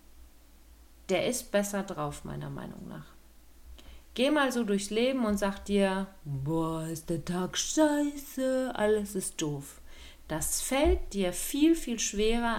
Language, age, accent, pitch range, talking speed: German, 40-59, German, 160-220 Hz, 140 wpm